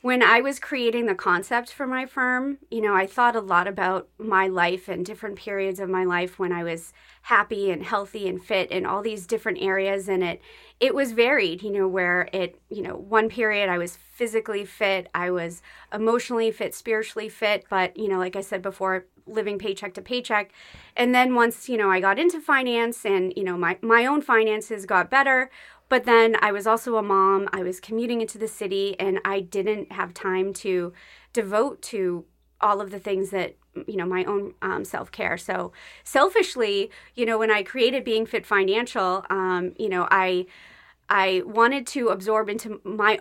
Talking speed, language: 195 wpm, English